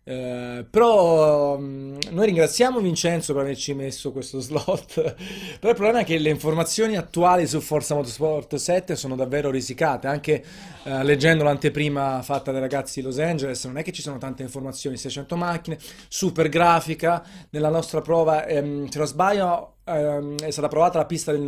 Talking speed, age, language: 170 wpm, 30-49, Italian